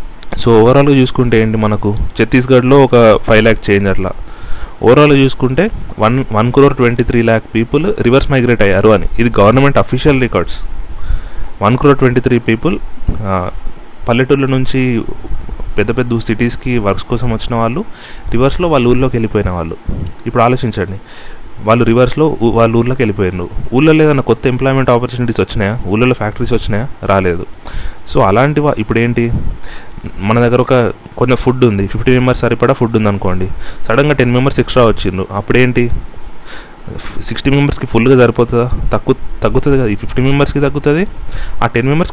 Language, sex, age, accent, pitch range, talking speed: Telugu, male, 30-49, native, 105-130 Hz, 140 wpm